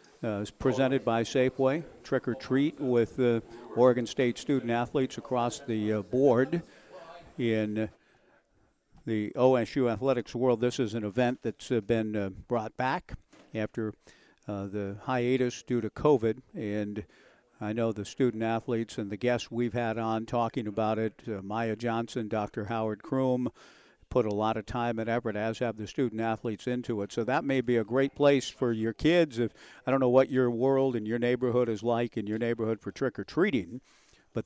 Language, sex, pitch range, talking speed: English, male, 110-130 Hz, 170 wpm